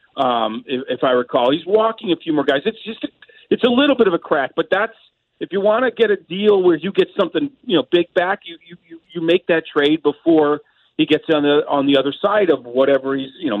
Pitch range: 135-180 Hz